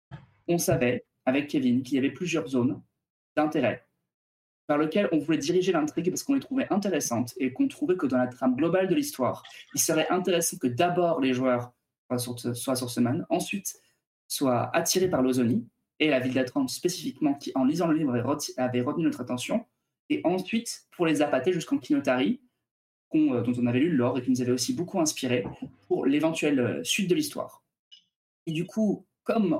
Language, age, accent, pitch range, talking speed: French, 20-39, French, 130-195 Hz, 180 wpm